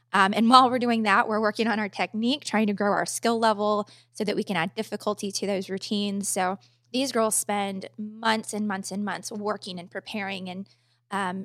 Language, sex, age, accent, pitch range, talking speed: English, female, 20-39, American, 185-210 Hz, 210 wpm